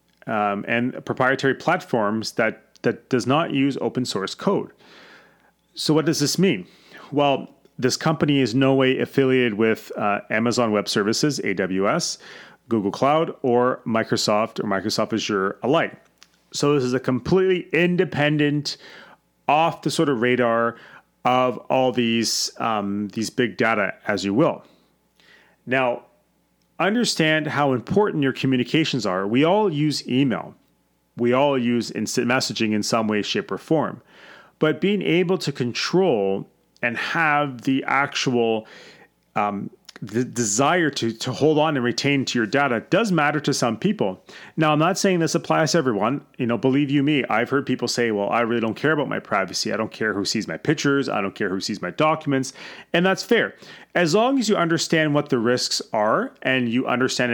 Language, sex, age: English, male, 30-49